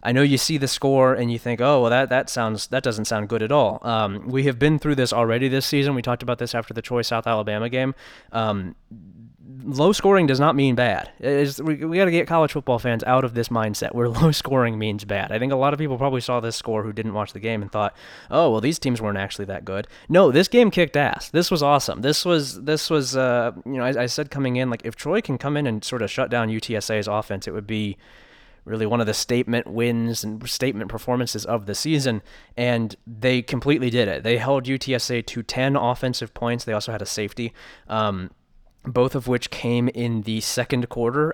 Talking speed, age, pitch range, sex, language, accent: 235 wpm, 20-39, 110-135 Hz, male, English, American